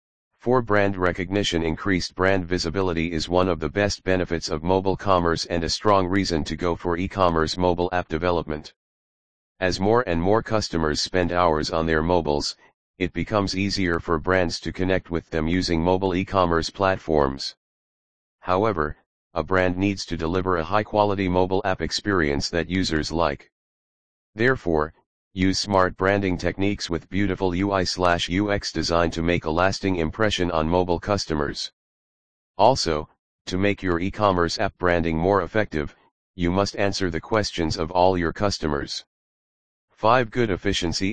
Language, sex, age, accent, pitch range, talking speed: English, male, 40-59, American, 80-95 Hz, 150 wpm